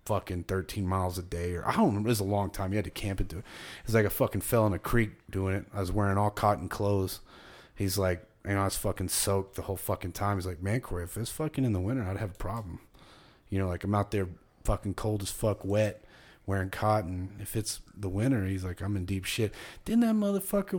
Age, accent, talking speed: 30-49, American, 260 wpm